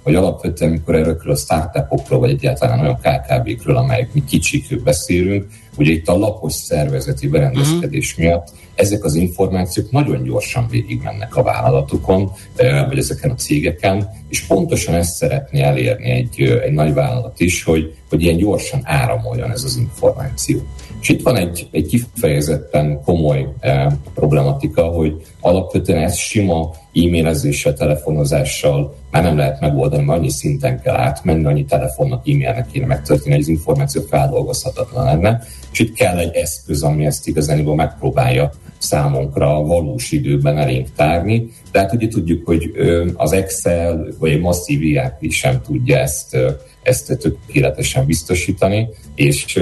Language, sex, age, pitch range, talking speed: Hungarian, male, 40-59, 75-110 Hz, 145 wpm